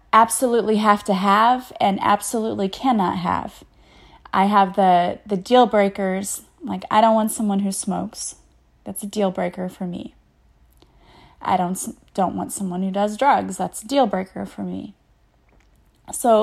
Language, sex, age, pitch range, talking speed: English, female, 20-39, 195-230 Hz, 155 wpm